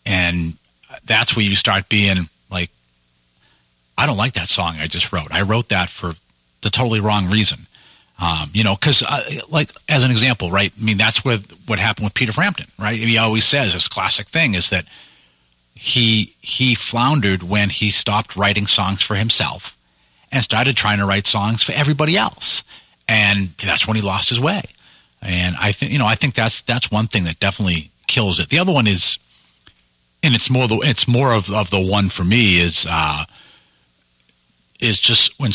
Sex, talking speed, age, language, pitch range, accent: male, 190 wpm, 40-59, English, 85-115 Hz, American